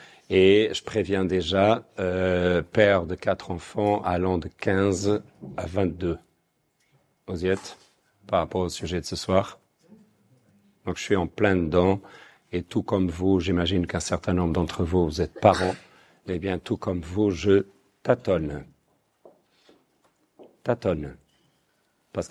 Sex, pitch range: male, 90-105 Hz